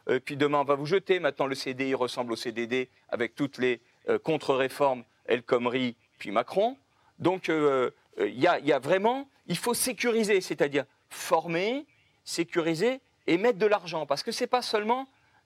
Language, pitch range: French, 155-235 Hz